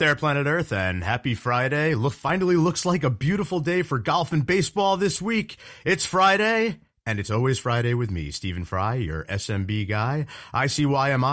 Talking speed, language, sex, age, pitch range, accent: 190 wpm, English, male, 40-59, 105-145 Hz, American